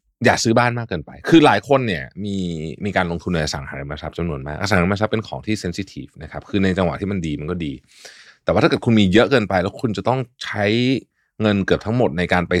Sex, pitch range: male, 80-105 Hz